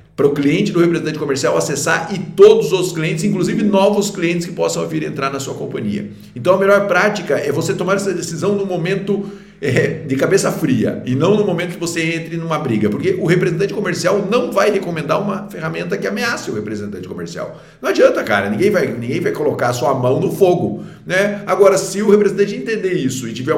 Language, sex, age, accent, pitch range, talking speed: Portuguese, male, 50-69, Brazilian, 140-200 Hz, 205 wpm